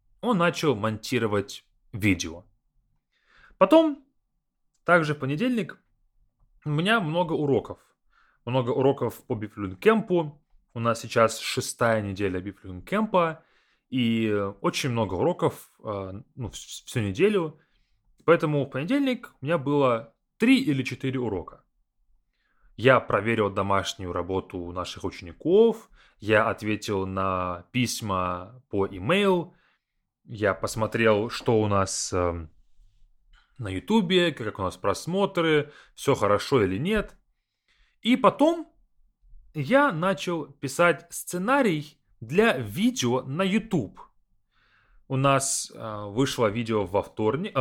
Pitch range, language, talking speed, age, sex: 105-175 Hz, English, 105 wpm, 20-39, male